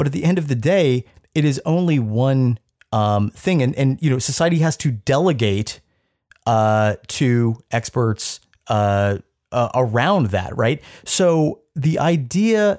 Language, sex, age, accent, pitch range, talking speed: English, male, 30-49, American, 110-145 Hz, 150 wpm